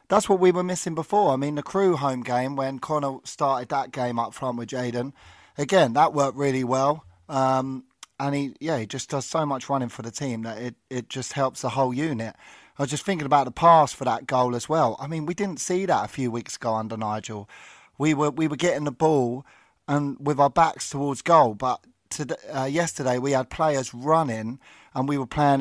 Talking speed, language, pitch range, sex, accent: 225 wpm, English, 120-145 Hz, male, British